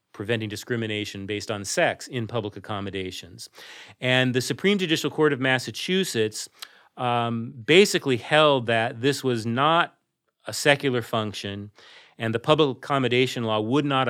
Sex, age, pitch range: male, 40-59, 110-135 Hz